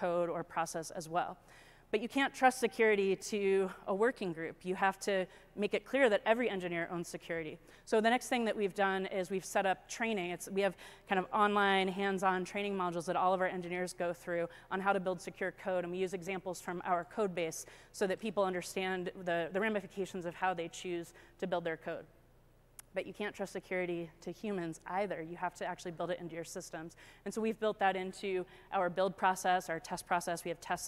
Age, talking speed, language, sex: 30-49, 220 wpm, English, female